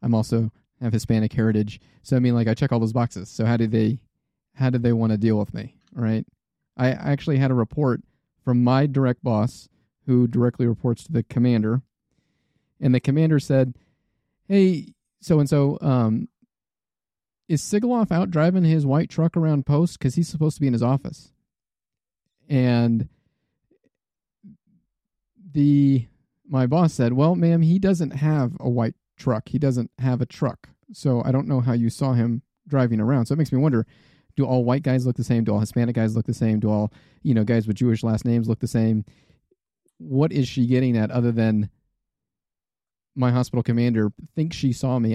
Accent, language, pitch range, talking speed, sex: American, English, 115-145 Hz, 190 wpm, male